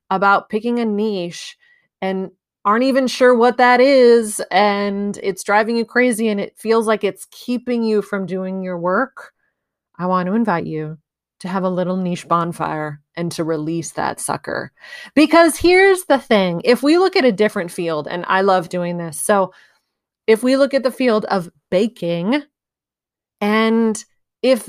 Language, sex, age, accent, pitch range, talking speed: English, female, 30-49, American, 185-245 Hz, 170 wpm